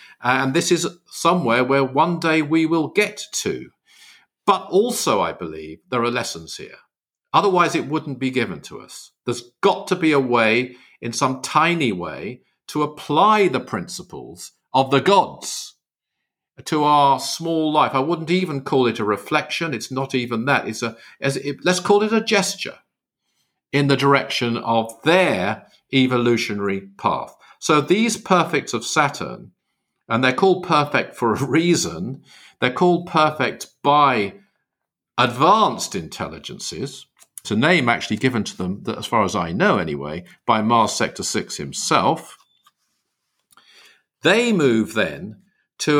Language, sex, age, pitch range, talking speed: English, male, 50-69, 120-165 Hz, 150 wpm